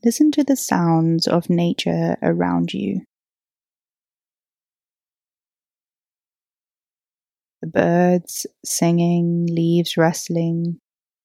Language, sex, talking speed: English, female, 70 wpm